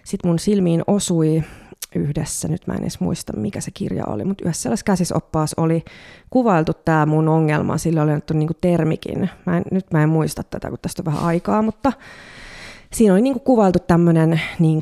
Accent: native